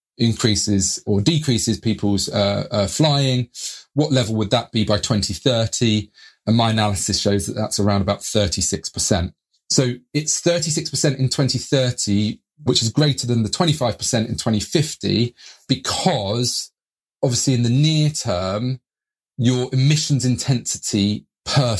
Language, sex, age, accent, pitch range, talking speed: English, male, 30-49, British, 100-125 Hz, 125 wpm